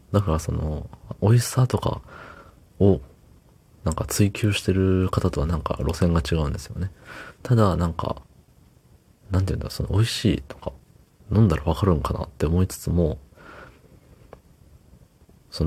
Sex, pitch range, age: male, 80-105 Hz, 40-59